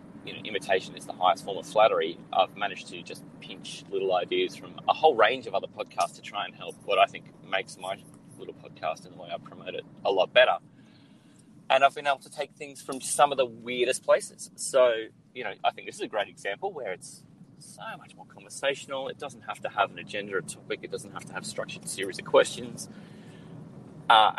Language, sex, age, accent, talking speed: English, male, 30-49, Australian, 225 wpm